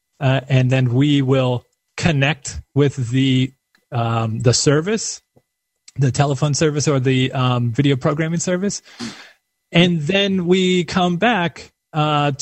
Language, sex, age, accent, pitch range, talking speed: English, male, 30-49, American, 130-160 Hz, 125 wpm